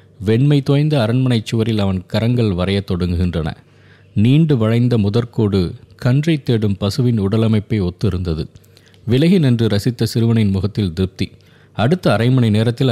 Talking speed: 120 wpm